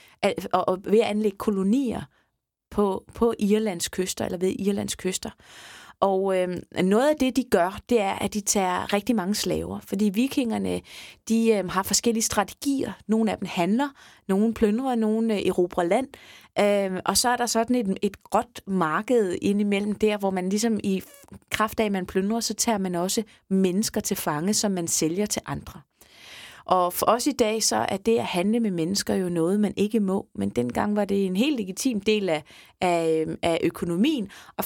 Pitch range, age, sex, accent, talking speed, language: 185-225 Hz, 20-39, female, native, 185 wpm, Danish